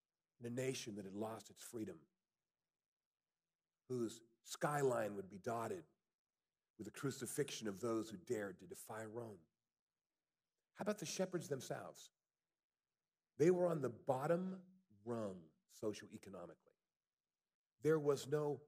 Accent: American